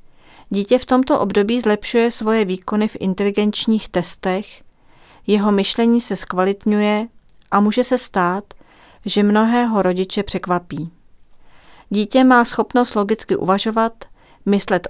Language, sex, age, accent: Czech, female, 40-59, native